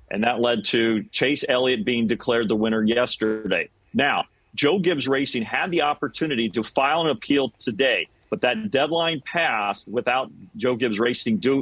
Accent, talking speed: American, 160 wpm